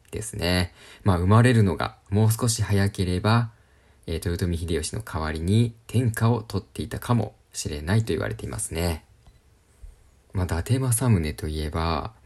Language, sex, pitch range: Japanese, male, 85-105 Hz